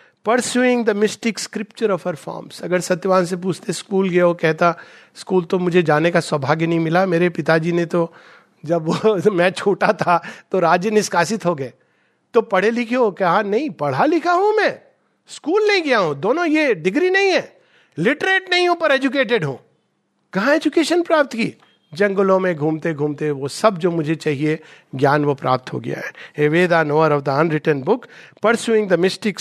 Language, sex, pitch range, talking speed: Hindi, male, 150-210 Hz, 170 wpm